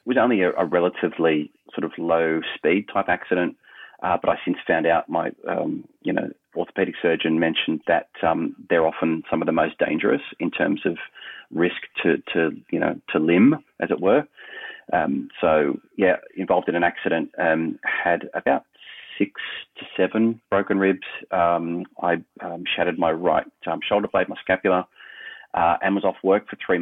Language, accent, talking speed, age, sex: English, Australian, 180 wpm, 30-49, male